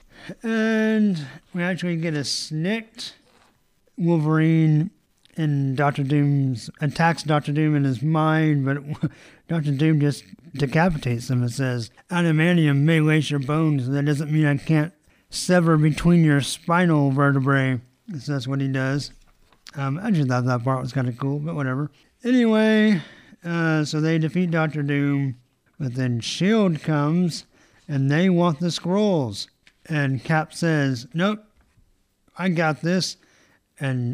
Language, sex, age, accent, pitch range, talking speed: English, male, 50-69, American, 135-175 Hz, 140 wpm